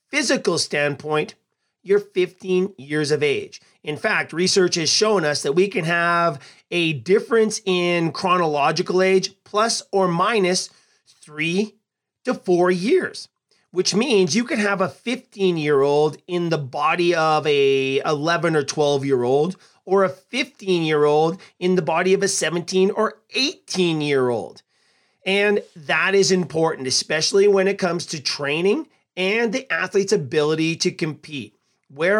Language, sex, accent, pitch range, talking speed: English, male, American, 155-195 Hz, 150 wpm